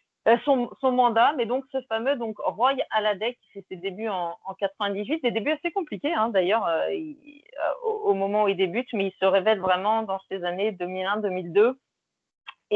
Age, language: 30-49, French